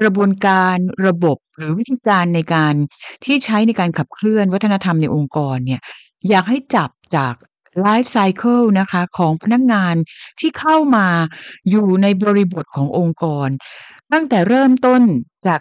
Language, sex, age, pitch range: Thai, female, 60-79, 170-215 Hz